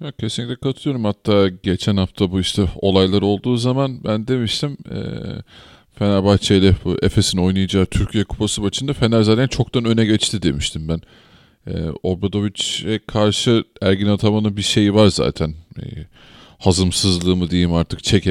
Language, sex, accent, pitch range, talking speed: Turkish, male, native, 90-120 Hz, 140 wpm